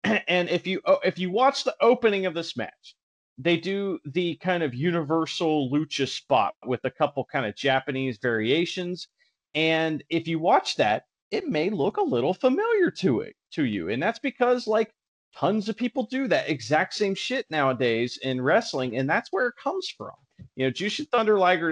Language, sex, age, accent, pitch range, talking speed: English, male, 30-49, American, 125-185 Hz, 185 wpm